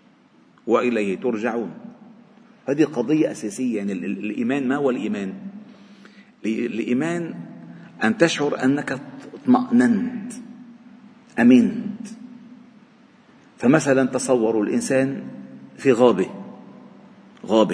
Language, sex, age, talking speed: Arabic, male, 50-69, 75 wpm